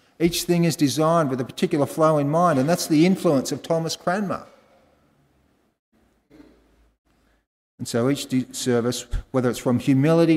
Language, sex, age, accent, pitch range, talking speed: English, male, 40-59, Australian, 135-175 Hz, 145 wpm